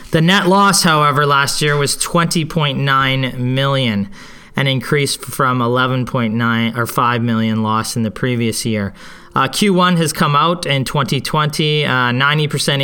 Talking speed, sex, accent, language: 130 wpm, male, American, English